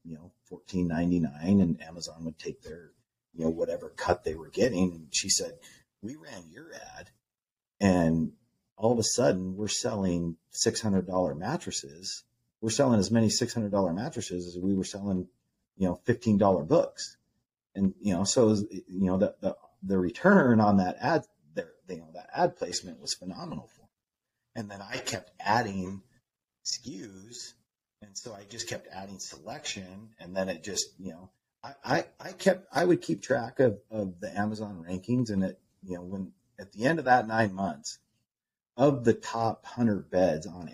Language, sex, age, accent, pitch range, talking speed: English, male, 40-59, American, 90-115 Hz, 180 wpm